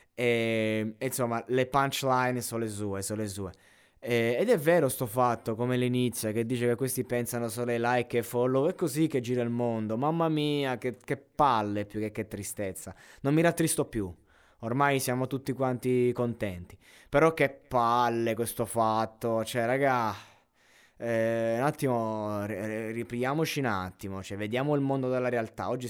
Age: 20-39